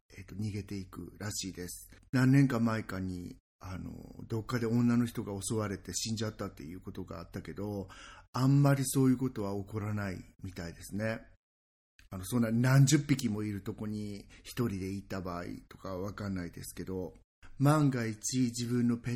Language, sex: Japanese, male